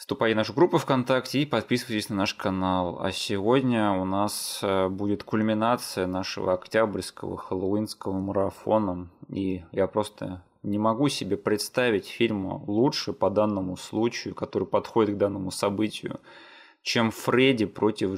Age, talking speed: 20-39, 130 wpm